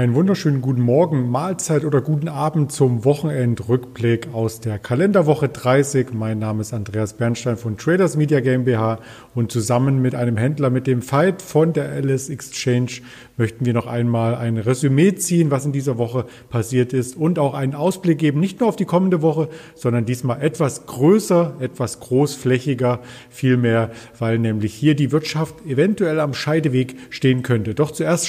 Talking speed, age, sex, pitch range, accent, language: 165 wpm, 40-59, male, 120-155 Hz, German, German